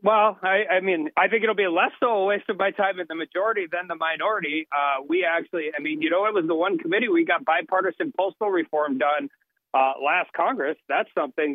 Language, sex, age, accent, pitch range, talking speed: English, male, 40-59, American, 135-195 Hz, 230 wpm